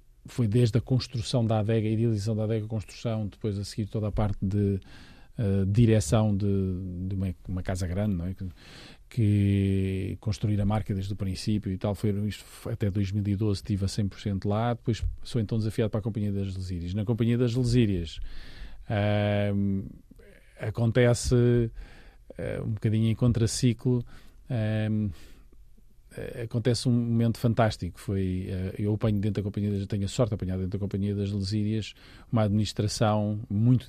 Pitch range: 95-115 Hz